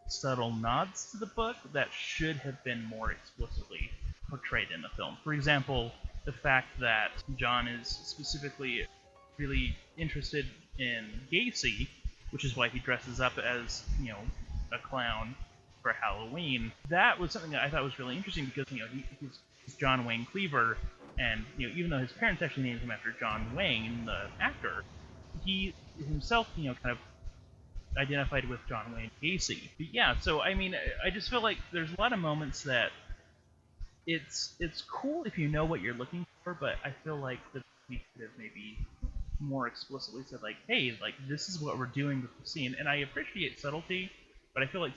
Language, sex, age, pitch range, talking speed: English, male, 30-49, 120-160 Hz, 185 wpm